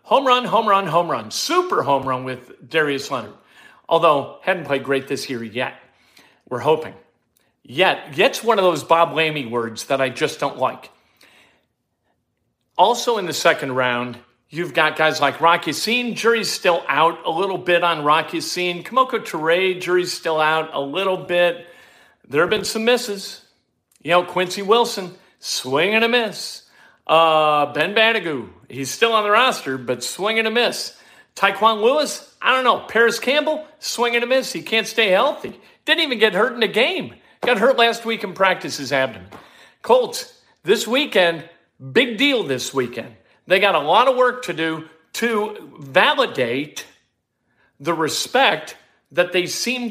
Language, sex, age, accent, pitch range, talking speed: English, male, 50-69, American, 155-230 Hz, 170 wpm